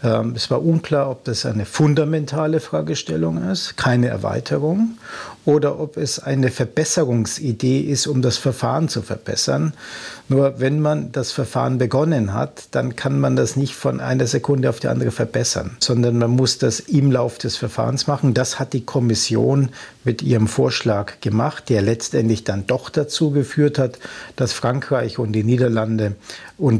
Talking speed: 160 wpm